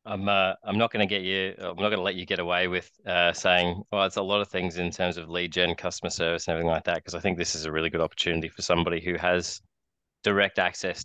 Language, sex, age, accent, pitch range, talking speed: English, male, 20-39, Australian, 85-95 Hz, 275 wpm